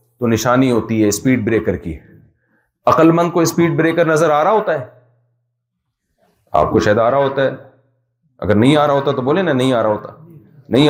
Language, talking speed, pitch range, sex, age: Urdu, 200 wpm, 125-170 Hz, male, 40-59